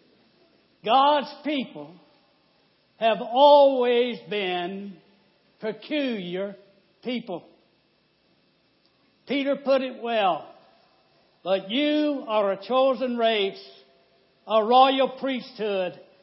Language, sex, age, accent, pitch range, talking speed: English, male, 60-79, American, 195-260 Hz, 75 wpm